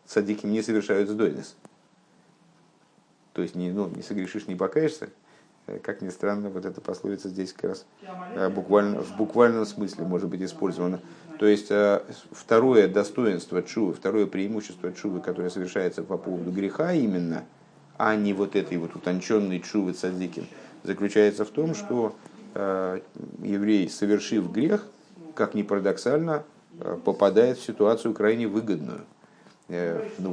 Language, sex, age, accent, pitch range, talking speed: Russian, male, 50-69, native, 90-110 Hz, 130 wpm